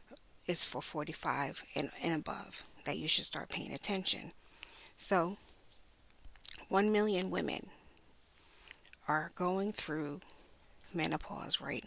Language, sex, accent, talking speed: English, female, American, 105 wpm